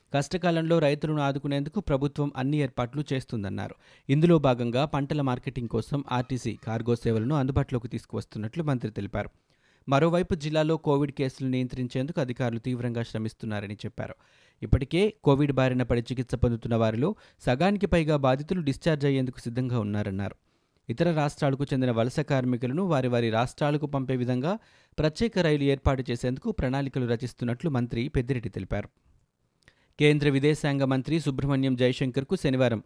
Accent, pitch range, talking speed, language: native, 120-145 Hz, 120 wpm, Telugu